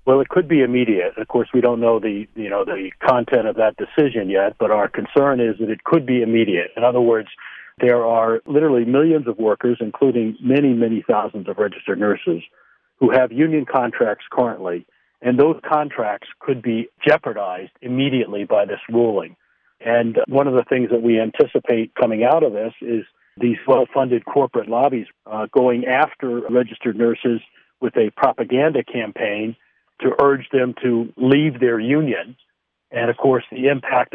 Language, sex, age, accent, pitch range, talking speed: English, male, 60-79, American, 110-130 Hz, 170 wpm